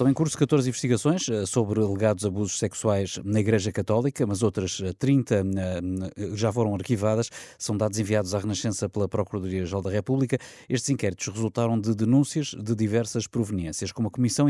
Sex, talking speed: male, 160 wpm